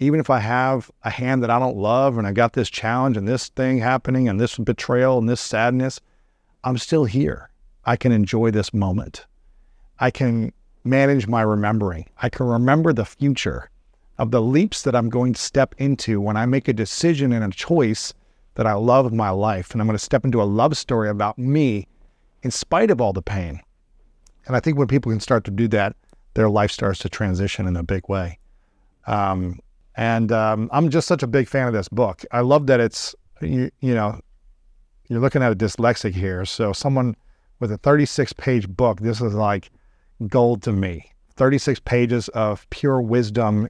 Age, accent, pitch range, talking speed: 50-69, American, 105-130 Hz, 200 wpm